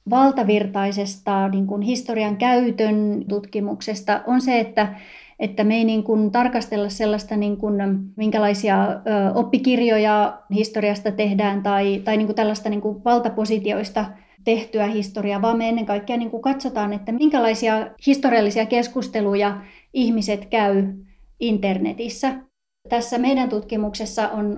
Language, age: Finnish, 30-49